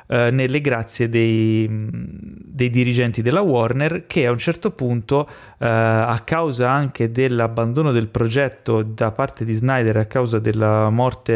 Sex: male